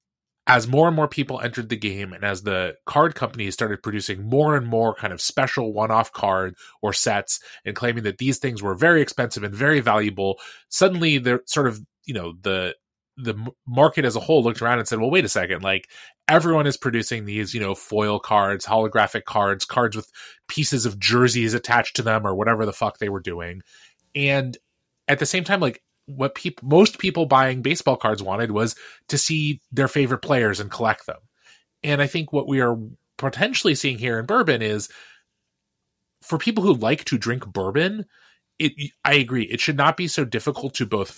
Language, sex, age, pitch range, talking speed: English, male, 20-39, 110-145 Hz, 195 wpm